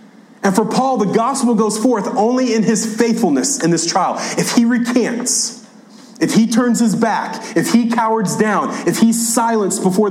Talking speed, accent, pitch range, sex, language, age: 180 wpm, American, 195-235 Hz, male, English, 40-59